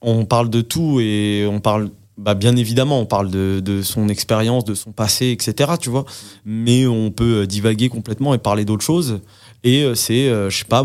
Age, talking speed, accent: 20-39, 200 wpm, French